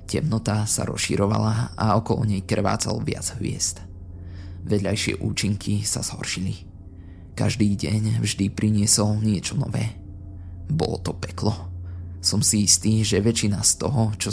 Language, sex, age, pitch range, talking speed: Slovak, male, 20-39, 90-110 Hz, 125 wpm